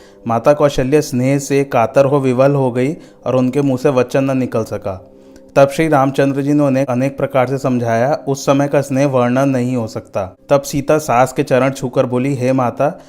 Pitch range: 125-140 Hz